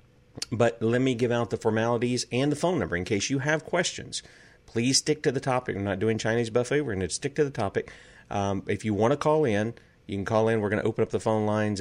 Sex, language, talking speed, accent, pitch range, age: male, English, 265 wpm, American, 100-120 Hz, 40-59